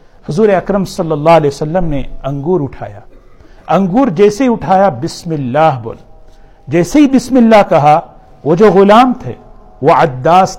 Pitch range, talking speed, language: 150-210 Hz, 155 wpm, Urdu